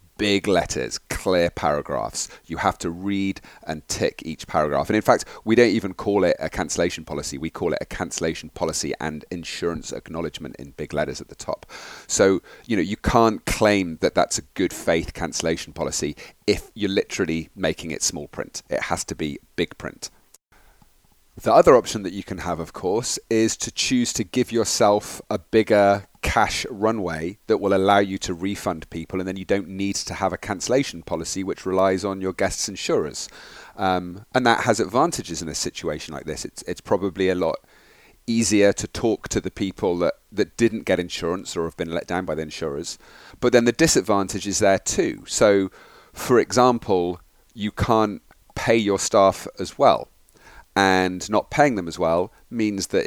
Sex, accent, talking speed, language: male, British, 185 wpm, English